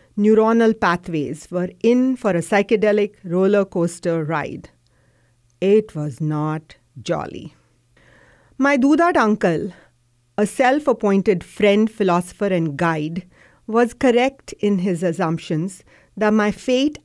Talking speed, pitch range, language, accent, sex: 115 wpm, 170-230 Hz, English, Indian, female